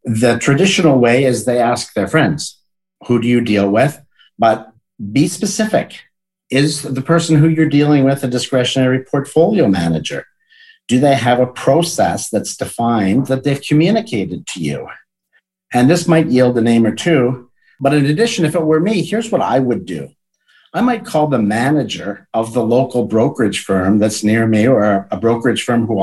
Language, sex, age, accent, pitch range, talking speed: English, male, 50-69, American, 110-150 Hz, 175 wpm